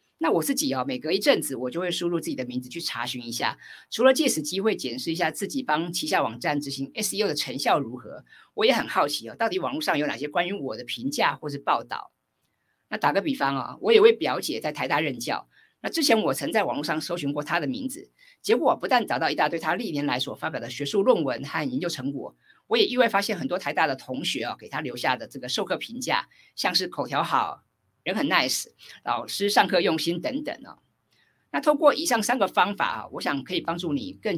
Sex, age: female, 50-69